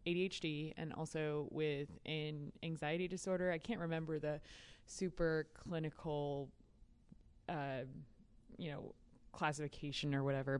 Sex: female